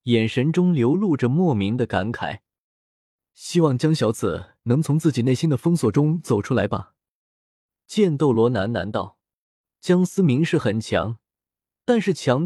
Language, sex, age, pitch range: Chinese, male, 20-39, 115-165 Hz